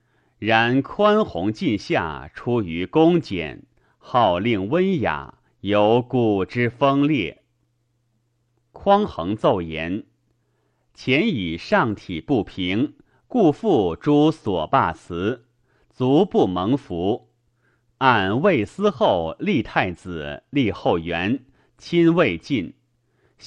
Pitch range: 110-135 Hz